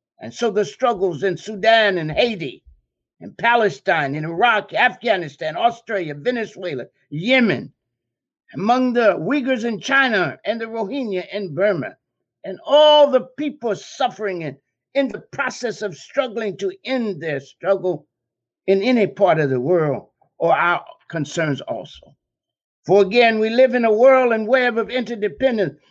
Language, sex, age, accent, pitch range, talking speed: English, male, 60-79, American, 185-250 Hz, 145 wpm